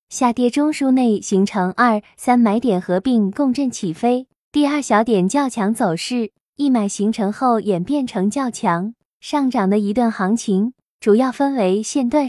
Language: Chinese